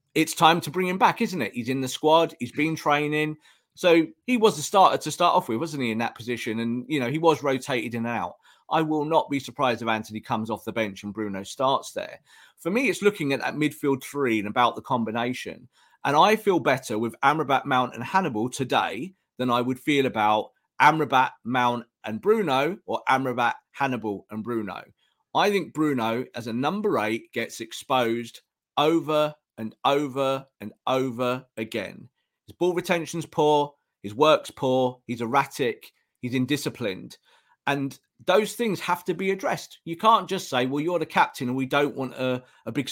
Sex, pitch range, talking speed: male, 120-160 Hz, 190 wpm